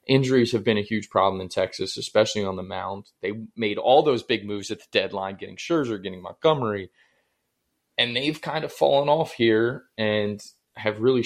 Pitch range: 100-130 Hz